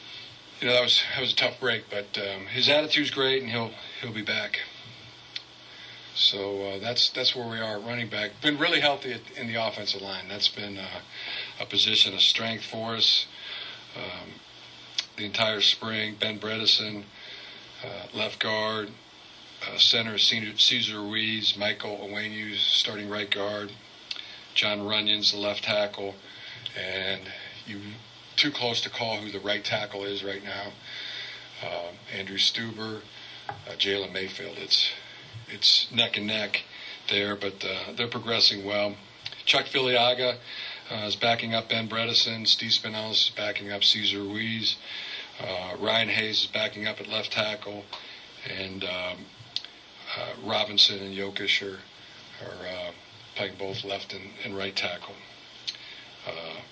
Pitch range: 100-115 Hz